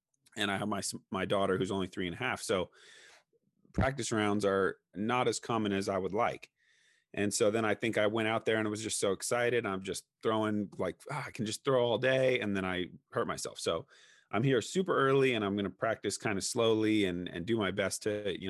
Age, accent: 30-49, American